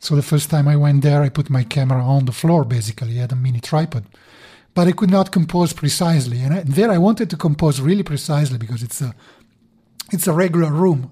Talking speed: 225 wpm